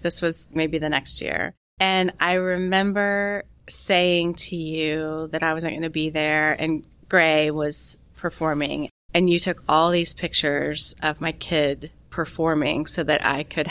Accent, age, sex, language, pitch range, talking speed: American, 30-49, female, English, 150-175 Hz, 160 wpm